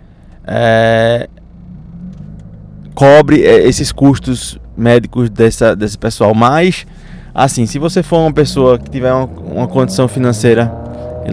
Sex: male